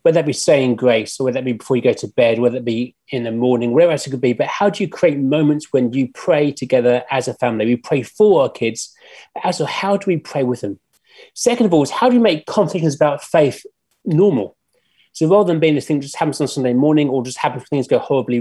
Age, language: 30-49, English